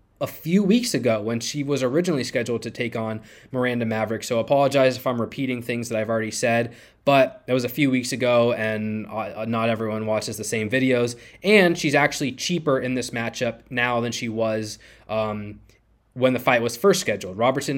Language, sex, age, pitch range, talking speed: English, male, 20-39, 115-140 Hz, 190 wpm